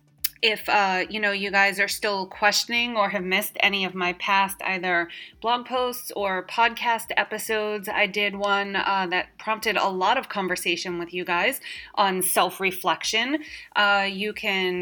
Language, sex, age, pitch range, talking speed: English, female, 30-49, 185-225 Hz, 160 wpm